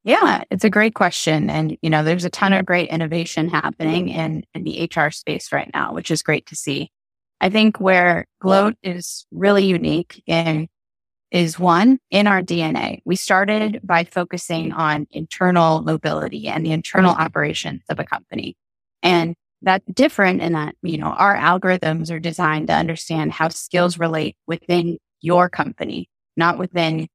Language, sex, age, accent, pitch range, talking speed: English, female, 20-39, American, 160-185 Hz, 165 wpm